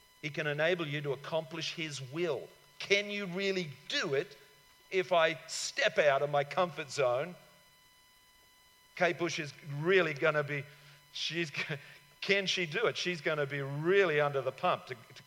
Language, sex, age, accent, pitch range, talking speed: English, male, 50-69, Australian, 140-180 Hz, 170 wpm